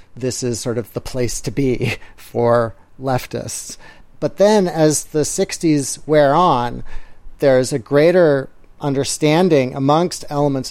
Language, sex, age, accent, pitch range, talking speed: English, male, 40-59, American, 115-140 Hz, 135 wpm